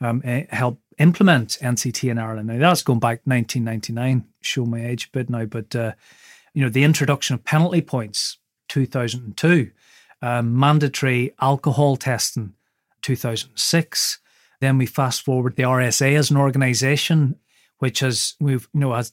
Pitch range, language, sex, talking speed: 125-145 Hz, English, male, 145 wpm